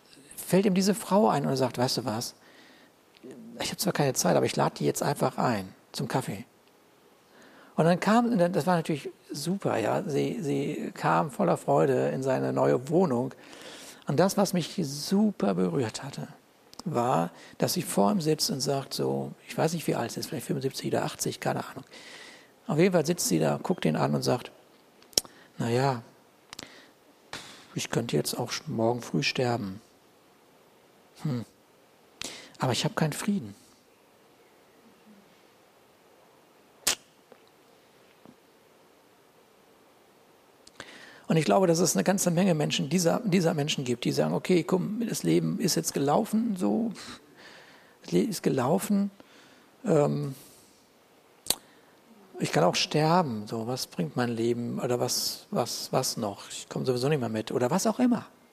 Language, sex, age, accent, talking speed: German, male, 60-79, German, 150 wpm